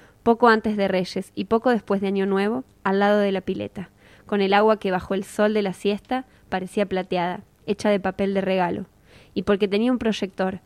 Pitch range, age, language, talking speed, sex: 190-215 Hz, 20-39, Spanish, 210 wpm, female